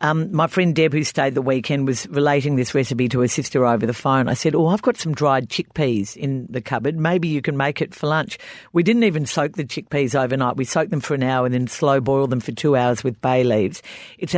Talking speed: 255 wpm